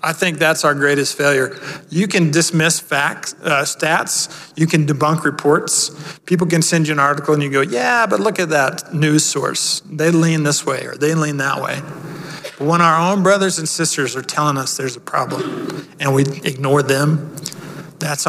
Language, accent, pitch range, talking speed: English, American, 145-170 Hz, 190 wpm